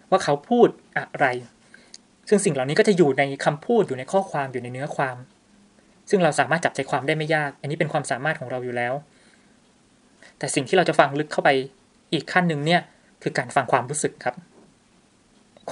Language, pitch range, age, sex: Thai, 140-185 Hz, 20-39, male